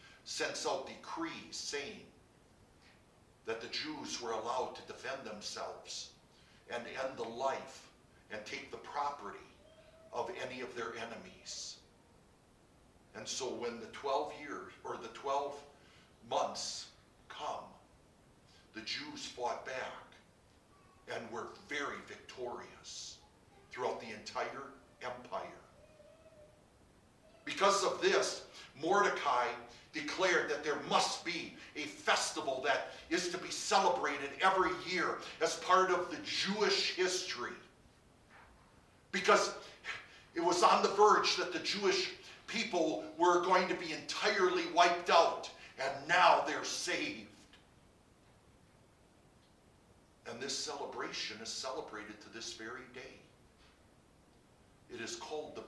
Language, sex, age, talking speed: English, male, 50-69, 115 wpm